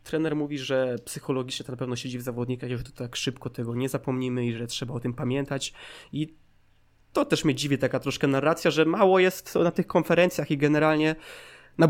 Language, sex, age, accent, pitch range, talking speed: Polish, male, 20-39, native, 130-155 Hz, 200 wpm